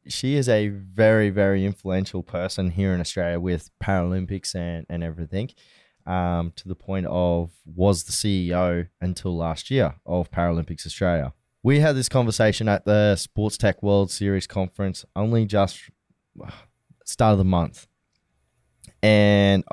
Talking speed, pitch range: 145 wpm, 90-110 Hz